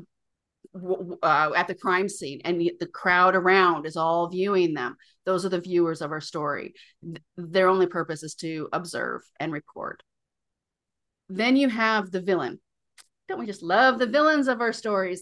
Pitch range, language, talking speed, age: 165-215 Hz, English, 165 wpm, 30-49